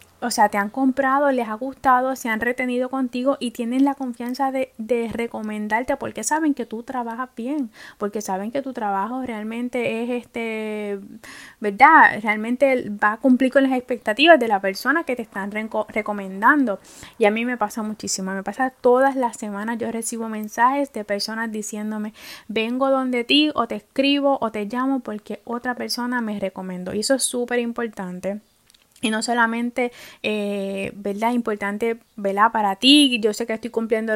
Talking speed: 170 wpm